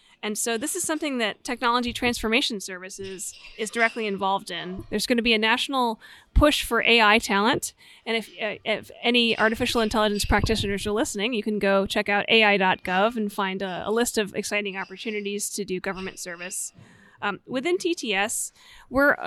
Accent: American